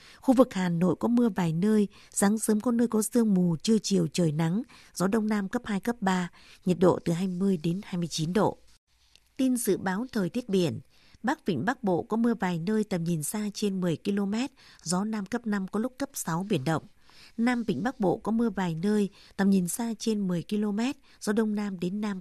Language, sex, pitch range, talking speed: Vietnamese, female, 180-220 Hz, 220 wpm